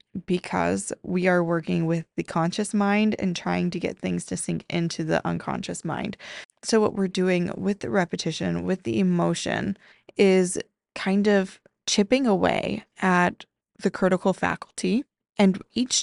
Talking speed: 150 wpm